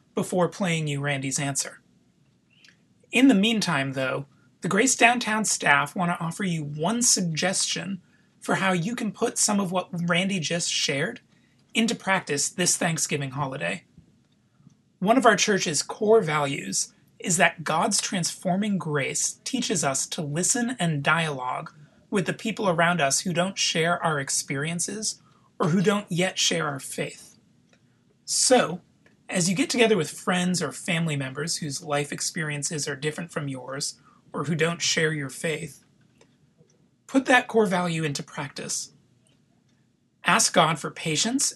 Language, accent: English, American